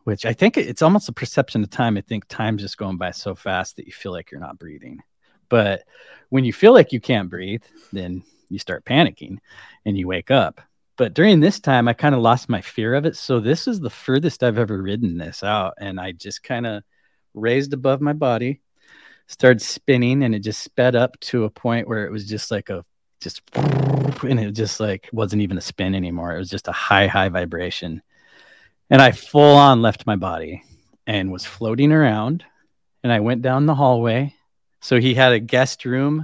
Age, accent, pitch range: 40-59, American, 105-130 Hz